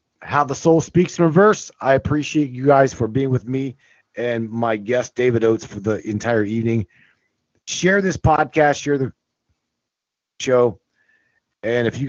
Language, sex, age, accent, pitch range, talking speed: English, male, 40-59, American, 105-135 Hz, 155 wpm